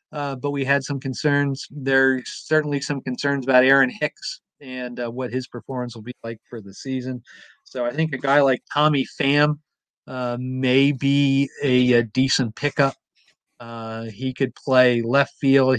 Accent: American